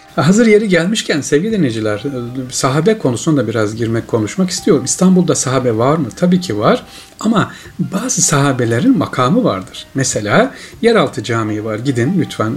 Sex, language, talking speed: male, Turkish, 145 wpm